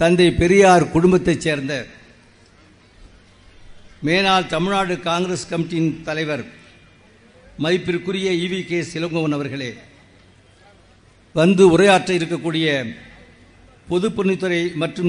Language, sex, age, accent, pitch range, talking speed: Tamil, male, 60-79, native, 120-180 Hz, 75 wpm